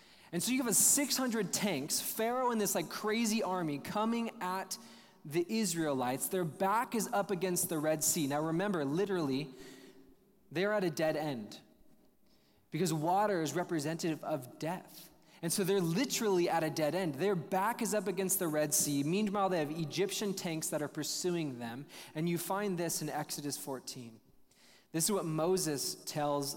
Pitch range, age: 145-190 Hz, 20-39